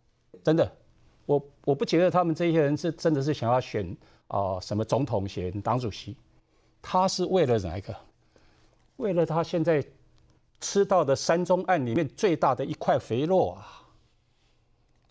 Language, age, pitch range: Chinese, 50-69, 120-170 Hz